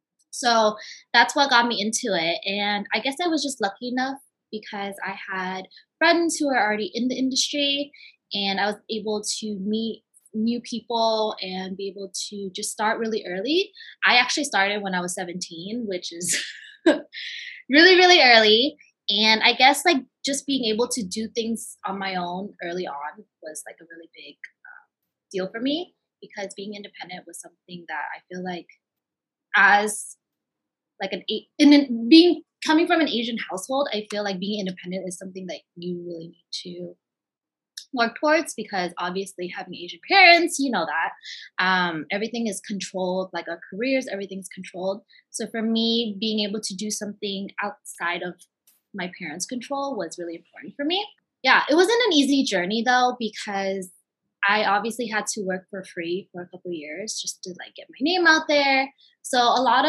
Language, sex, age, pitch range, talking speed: English, female, 20-39, 190-260 Hz, 175 wpm